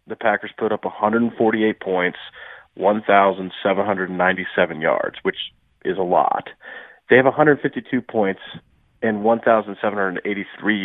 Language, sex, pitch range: English, male, 95-115 Hz